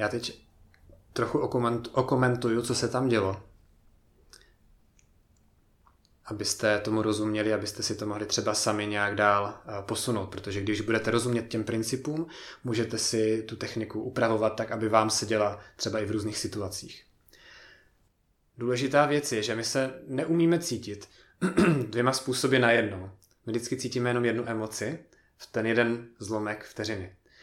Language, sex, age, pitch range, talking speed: Czech, male, 30-49, 105-125 Hz, 140 wpm